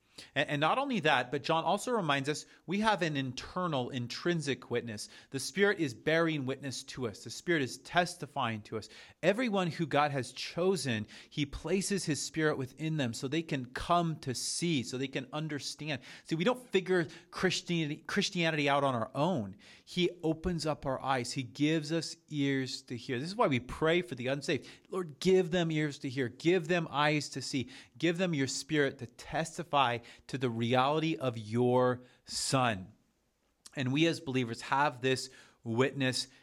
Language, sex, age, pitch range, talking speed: English, male, 30-49, 125-160 Hz, 175 wpm